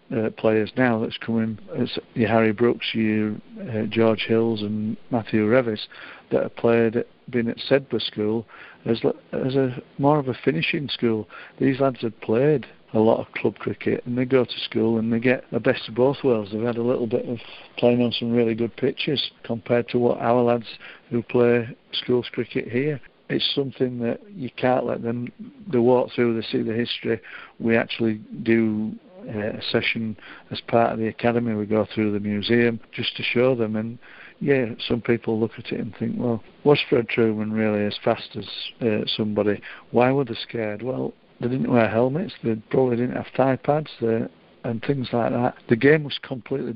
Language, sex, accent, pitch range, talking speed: English, male, British, 110-125 Hz, 195 wpm